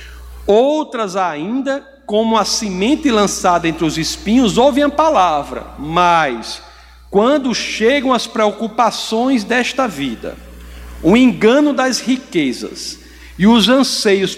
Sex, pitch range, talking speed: male, 190-285 Hz, 110 wpm